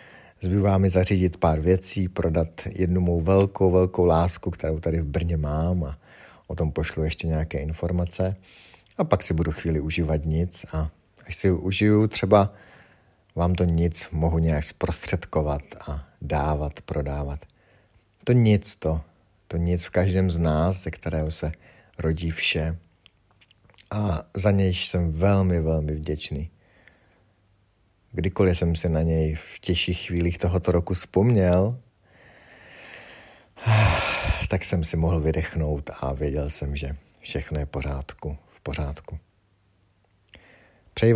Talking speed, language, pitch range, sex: 135 wpm, Czech, 80-100 Hz, male